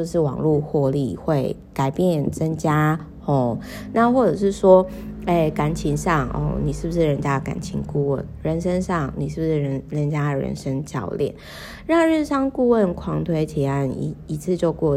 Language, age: Chinese, 20-39